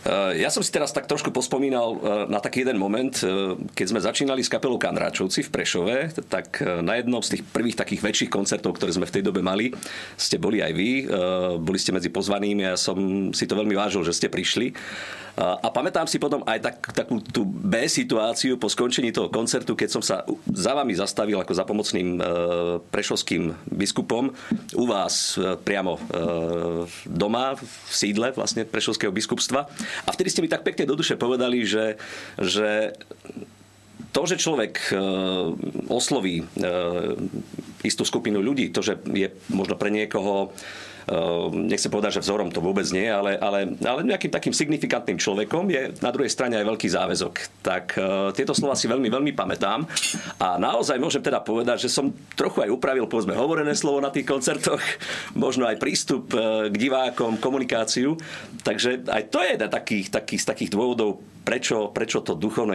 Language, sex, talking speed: Slovak, male, 170 wpm